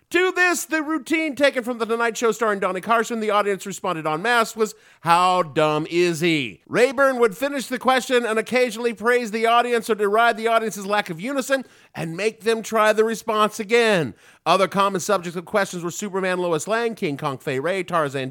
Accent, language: American, English